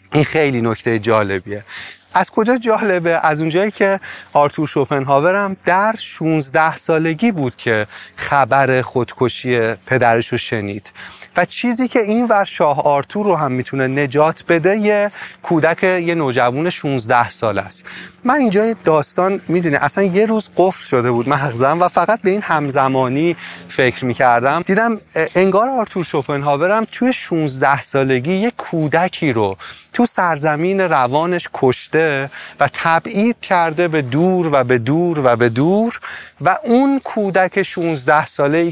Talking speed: 140 wpm